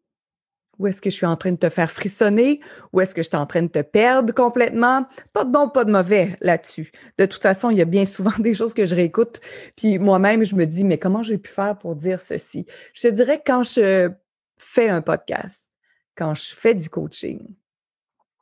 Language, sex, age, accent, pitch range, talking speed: French, female, 30-49, Canadian, 175-225 Hz, 225 wpm